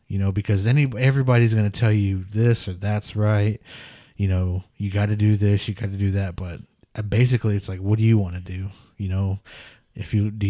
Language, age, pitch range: English, 20-39, 100-115 Hz